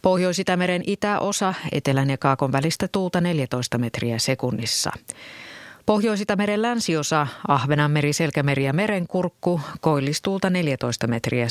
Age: 30-49